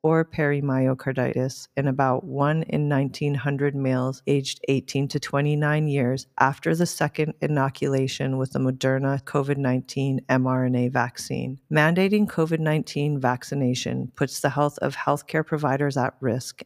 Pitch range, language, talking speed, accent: 135-155 Hz, English, 125 wpm, American